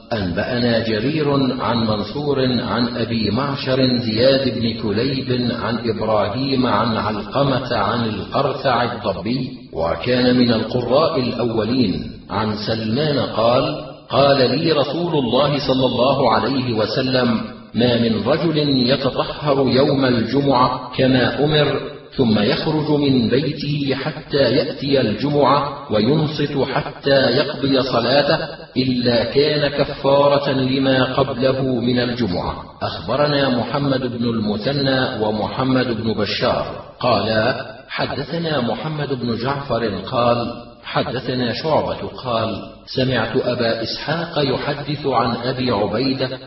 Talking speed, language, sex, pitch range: 105 wpm, Arabic, male, 115-140 Hz